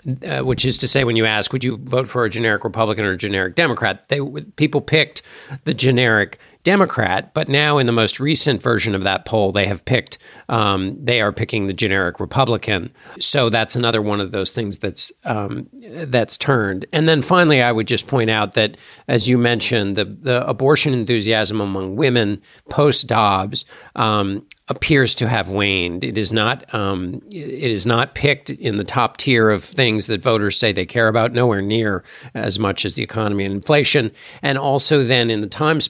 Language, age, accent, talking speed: English, 50-69, American, 195 wpm